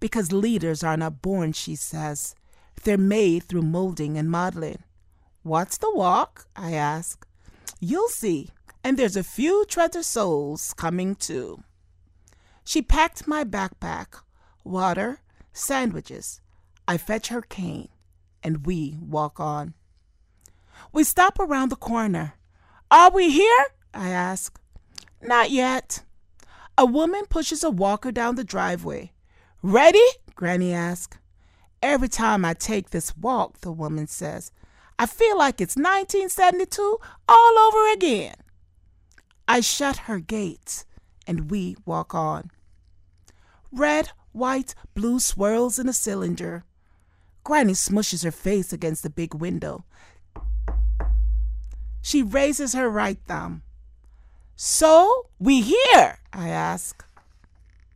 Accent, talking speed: American, 120 wpm